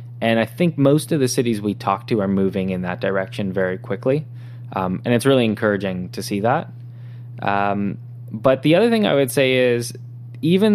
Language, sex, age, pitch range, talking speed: English, male, 20-39, 105-125 Hz, 195 wpm